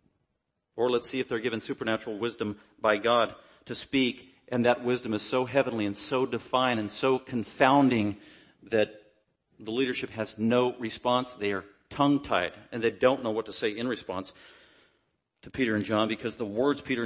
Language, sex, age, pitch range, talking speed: English, male, 40-59, 105-125 Hz, 175 wpm